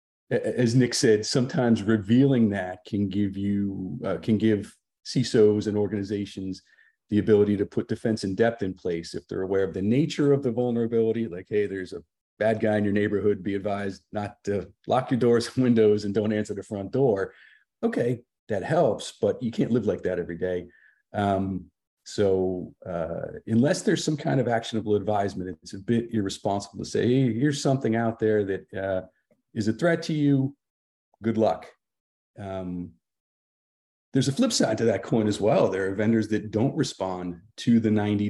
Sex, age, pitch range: male, 40-59, 100-115 Hz